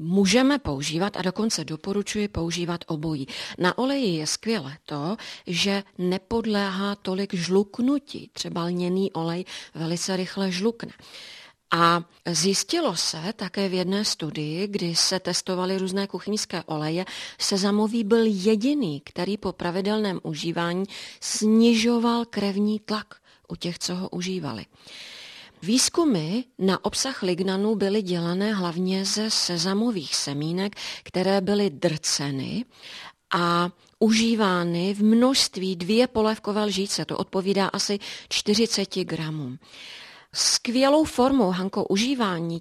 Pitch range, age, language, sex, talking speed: 175-215 Hz, 40-59, Czech, female, 115 wpm